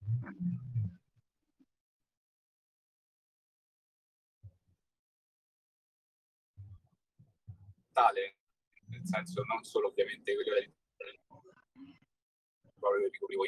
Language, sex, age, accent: Italian, male, 40-59, native